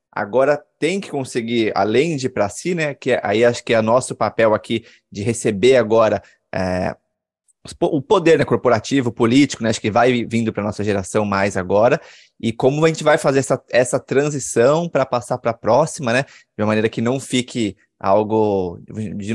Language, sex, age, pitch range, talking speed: Portuguese, male, 20-39, 105-135 Hz, 185 wpm